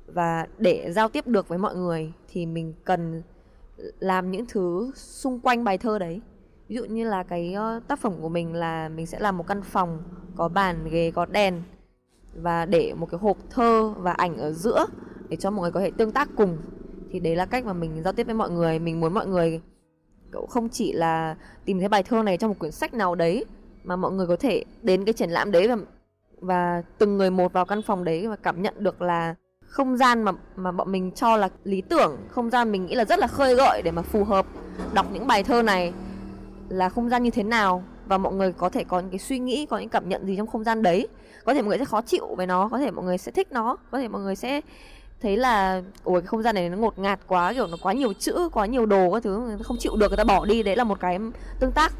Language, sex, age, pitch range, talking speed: English, female, 10-29, 175-230 Hz, 255 wpm